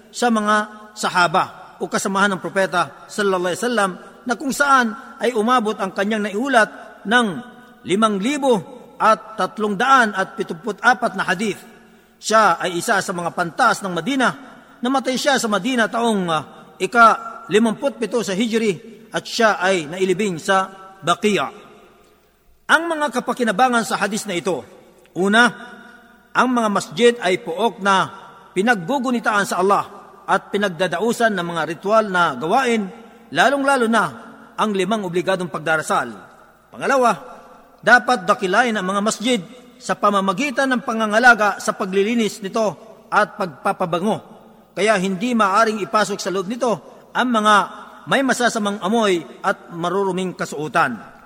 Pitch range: 195-235 Hz